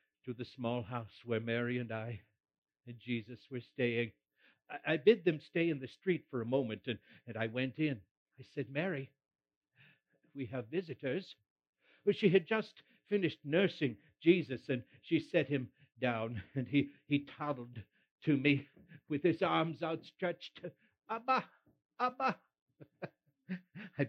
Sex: male